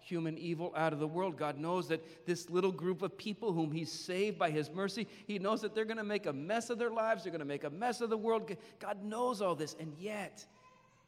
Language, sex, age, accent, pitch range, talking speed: English, male, 40-59, American, 140-175 Hz, 255 wpm